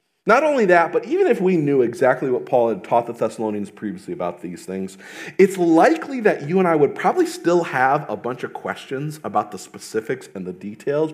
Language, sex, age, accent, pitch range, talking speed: English, male, 40-59, American, 140-200 Hz, 210 wpm